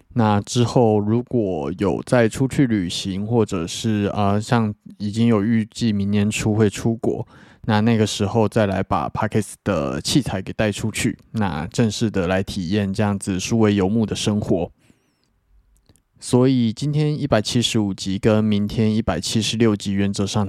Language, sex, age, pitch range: Chinese, male, 20-39, 100-115 Hz